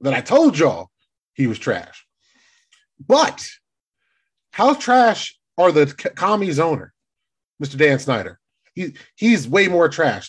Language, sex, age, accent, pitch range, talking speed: English, male, 30-49, American, 135-220 Hz, 130 wpm